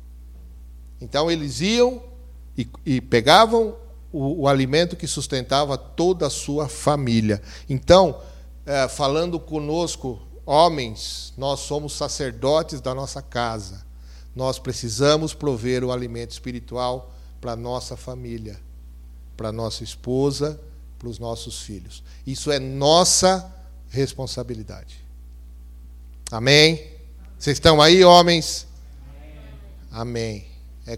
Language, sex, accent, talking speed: Portuguese, male, Brazilian, 105 wpm